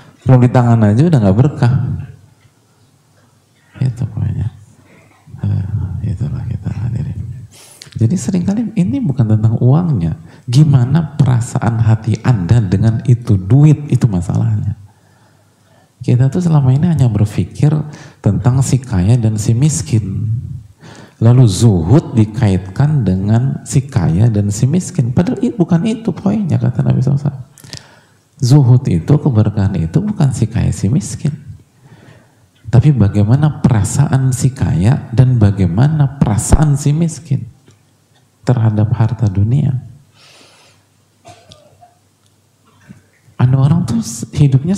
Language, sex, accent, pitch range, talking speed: English, male, Indonesian, 110-140 Hz, 110 wpm